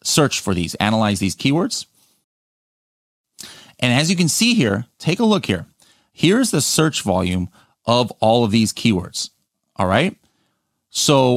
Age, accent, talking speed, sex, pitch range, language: 30-49, American, 150 wpm, male, 100-155 Hz, English